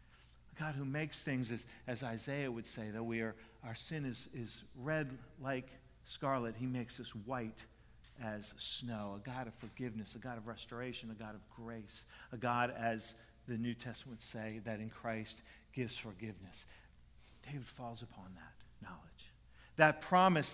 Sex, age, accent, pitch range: male, 50-69, American, 120-195 Hz